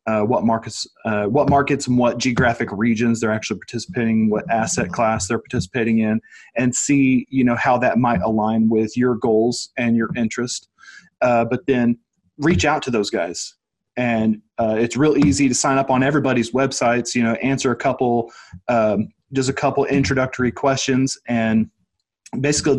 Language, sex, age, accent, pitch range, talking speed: English, male, 30-49, American, 115-135 Hz, 170 wpm